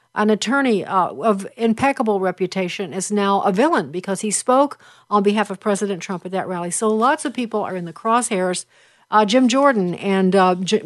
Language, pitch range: English, 195-245 Hz